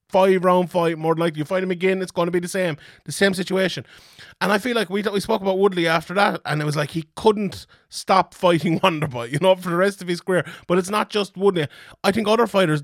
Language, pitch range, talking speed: English, 155-195 Hz, 255 wpm